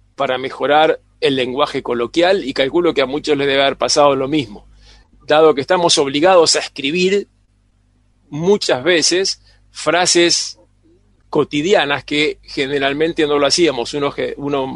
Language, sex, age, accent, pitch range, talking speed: Spanish, male, 40-59, Argentinian, 125-170 Hz, 135 wpm